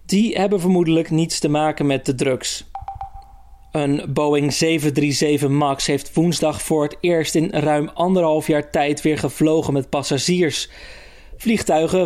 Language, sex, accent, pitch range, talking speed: Dutch, male, Dutch, 150-180 Hz, 140 wpm